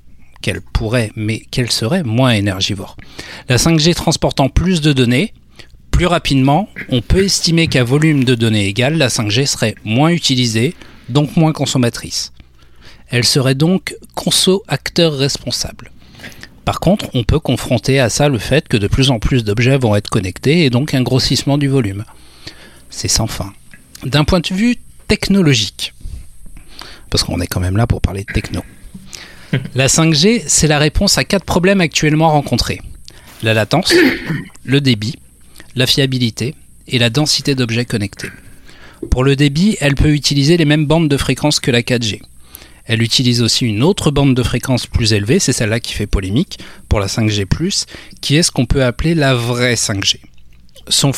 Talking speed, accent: 165 wpm, French